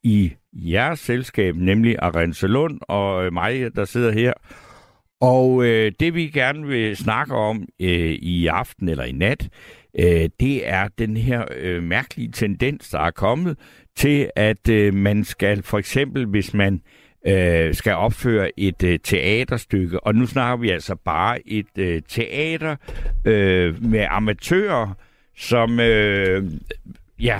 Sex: male